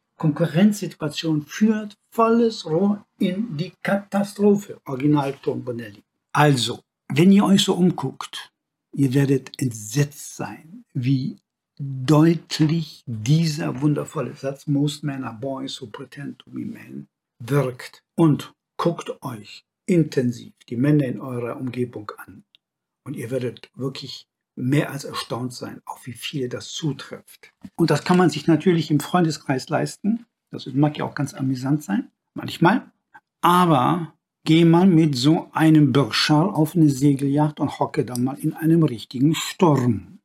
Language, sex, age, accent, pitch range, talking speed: German, male, 60-79, German, 135-165 Hz, 140 wpm